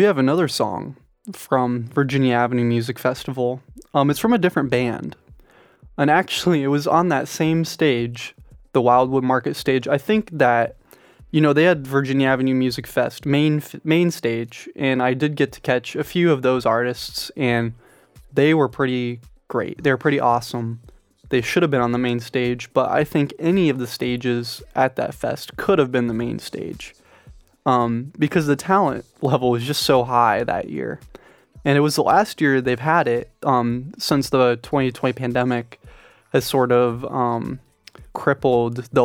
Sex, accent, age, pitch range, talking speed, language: male, American, 20-39, 120-150 Hz, 175 wpm, English